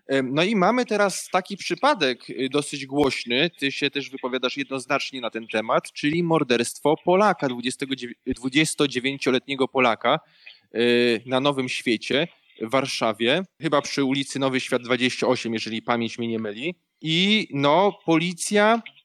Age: 20-39